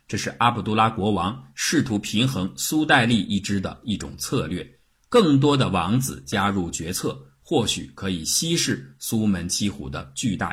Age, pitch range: 50-69, 85-135 Hz